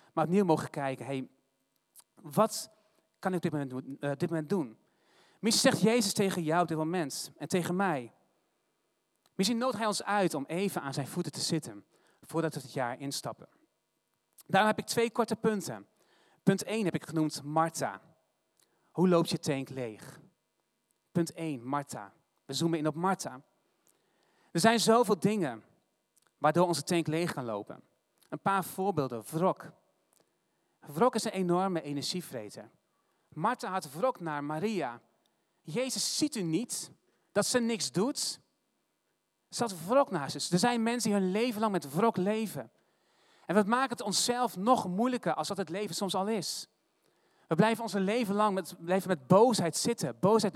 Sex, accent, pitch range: male, Dutch, 155-210 Hz